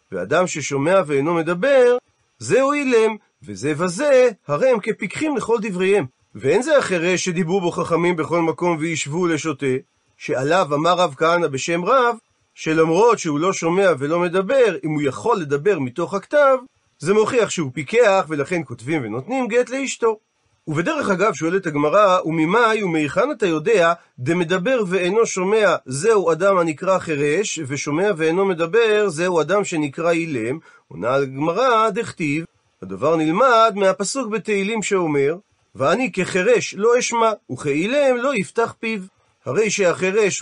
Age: 40-59